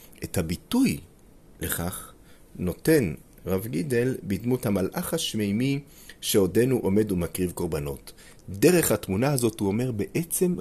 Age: 40-59